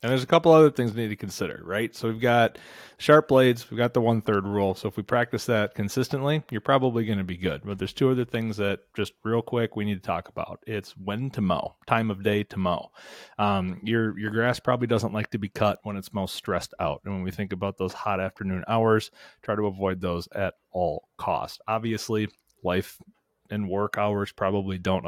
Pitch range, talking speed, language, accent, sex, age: 95-115 Hz, 225 wpm, English, American, male, 30-49